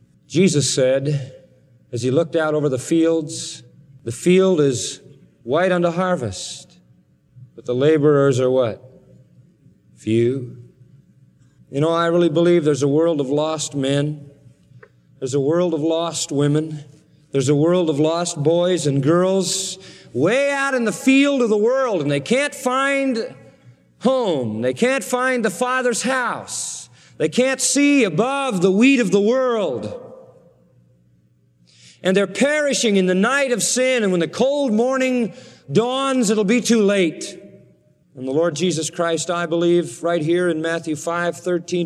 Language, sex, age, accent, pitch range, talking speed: English, male, 40-59, American, 150-220 Hz, 150 wpm